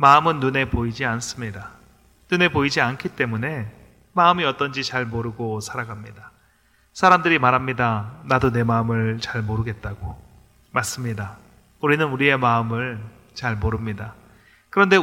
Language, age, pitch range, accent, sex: Korean, 30-49, 110-140 Hz, native, male